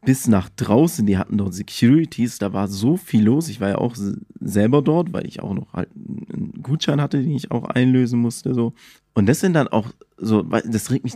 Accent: German